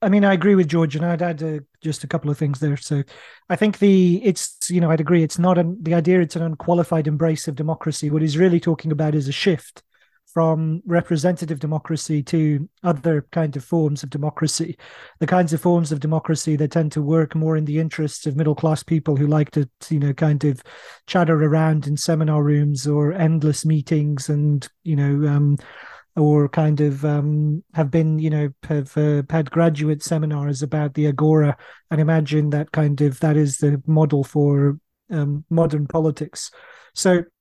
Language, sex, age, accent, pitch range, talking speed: English, male, 30-49, British, 150-170 Hz, 195 wpm